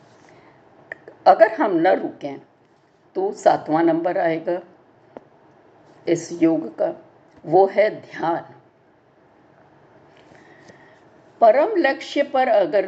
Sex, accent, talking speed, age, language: female, native, 85 wpm, 60-79, Hindi